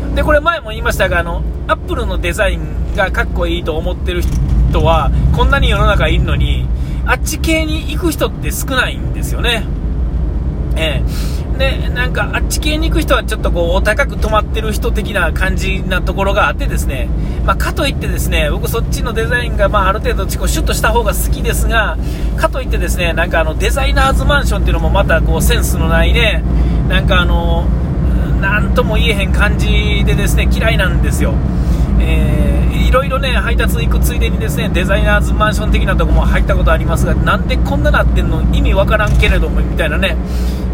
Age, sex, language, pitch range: 40-59, male, Japanese, 65-70 Hz